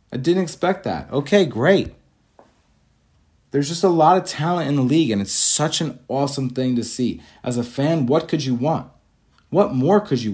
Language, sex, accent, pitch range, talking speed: English, male, American, 120-160 Hz, 195 wpm